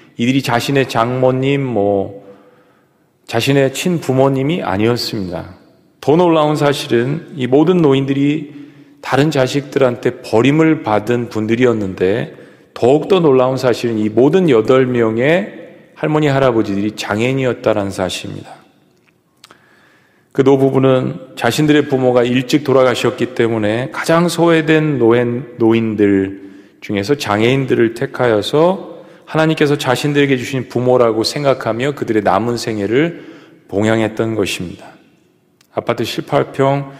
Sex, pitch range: male, 115-145 Hz